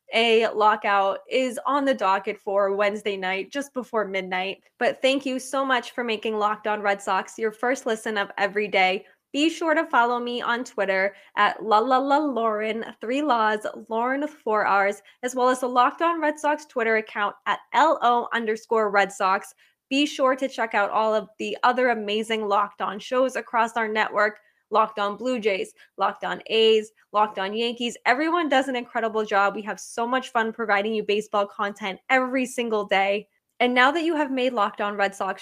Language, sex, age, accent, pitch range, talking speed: English, female, 10-29, American, 205-250 Hz, 195 wpm